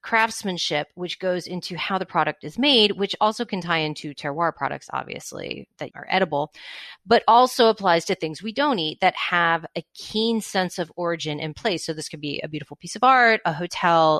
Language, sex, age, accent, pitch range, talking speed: English, female, 30-49, American, 155-200 Hz, 205 wpm